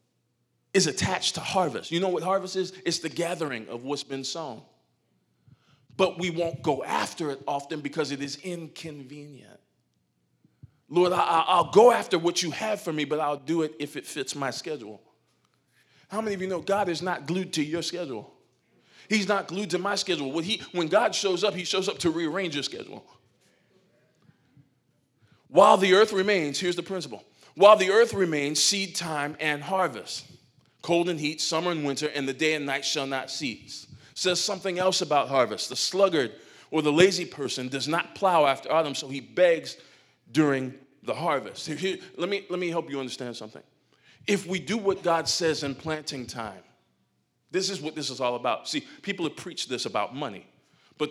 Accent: American